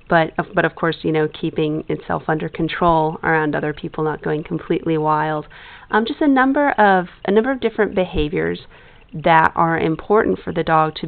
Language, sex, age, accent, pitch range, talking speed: English, female, 40-59, American, 160-210 Hz, 185 wpm